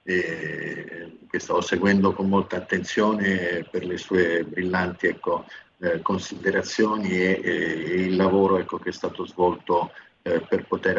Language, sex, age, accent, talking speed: Italian, male, 50-69, native, 140 wpm